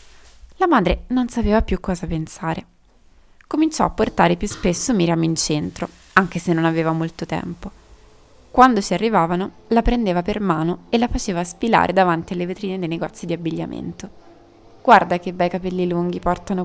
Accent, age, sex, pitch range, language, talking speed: native, 20-39, female, 170-215 Hz, Italian, 160 wpm